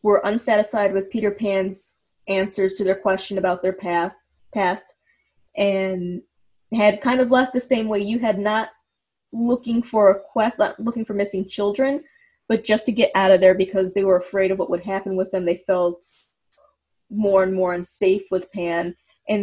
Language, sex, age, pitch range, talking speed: English, female, 20-39, 185-215 Hz, 180 wpm